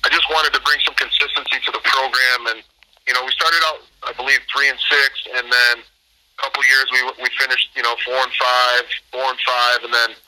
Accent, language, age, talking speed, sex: American, English, 30-49, 235 wpm, male